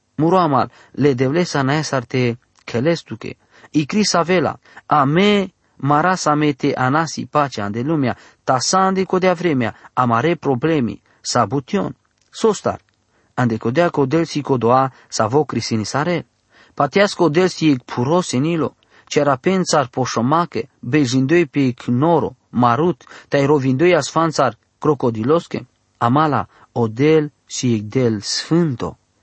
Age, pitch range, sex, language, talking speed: 40-59, 120-165 Hz, male, English, 110 wpm